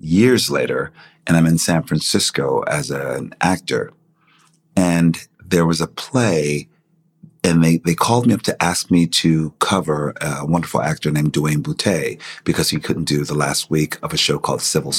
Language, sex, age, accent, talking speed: English, male, 40-59, American, 180 wpm